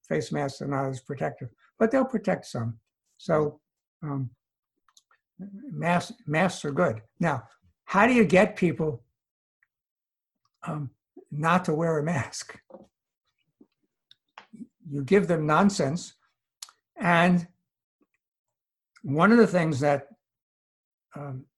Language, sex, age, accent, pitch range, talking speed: English, male, 60-79, American, 145-195 Hz, 105 wpm